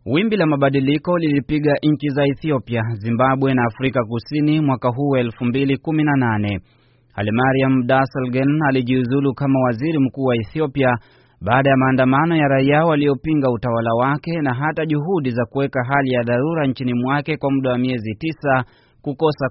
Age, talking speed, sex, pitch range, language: 30-49, 140 wpm, male, 125-145 Hz, Swahili